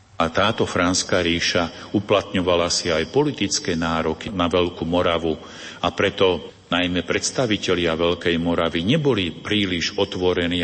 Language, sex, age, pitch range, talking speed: Slovak, male, 50-69, 80-90 Hz, 120 wpm